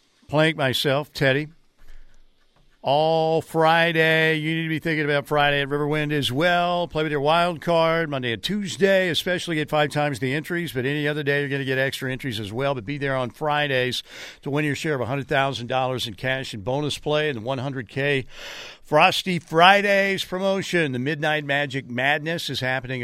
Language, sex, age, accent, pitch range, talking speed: English, male, 60-79, American, 130-160 Hz, 185 wpm